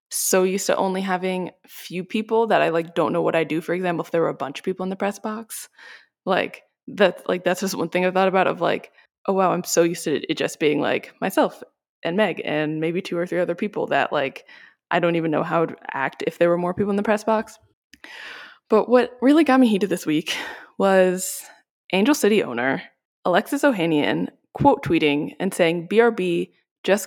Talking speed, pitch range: 215 wpm, 170-215 Hz